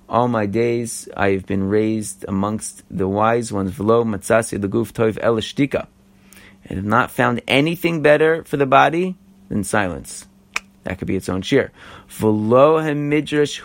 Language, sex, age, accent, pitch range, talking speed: English, male, 30-49, American, 95-110 Hz, 125 wpm